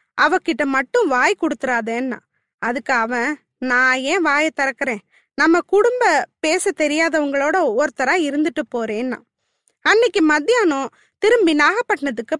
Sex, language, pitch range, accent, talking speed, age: female, Tamil, 265-365 Hz, native, 95 wpm, 20-39